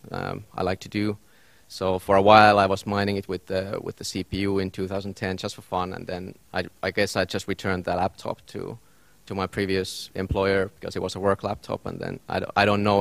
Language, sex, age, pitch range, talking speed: Finnish, male, 30-49, 95-105 Hz, 240 wpm